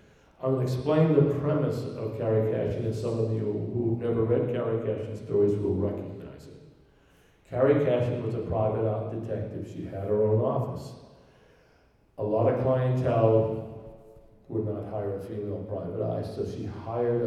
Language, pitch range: English, 100-120 Hz